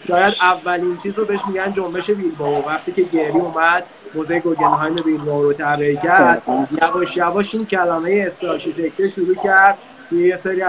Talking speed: 175 wpm